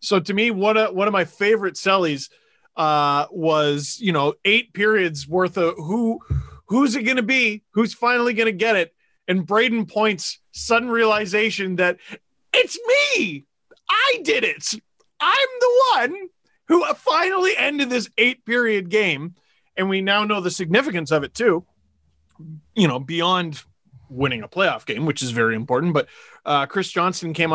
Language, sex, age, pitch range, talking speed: English, male, 30-49, 145-215 Hz, 165 wpm